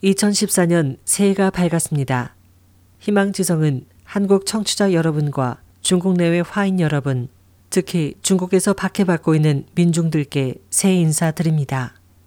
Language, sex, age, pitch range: Korean, female, 40-59, 145-185 Hz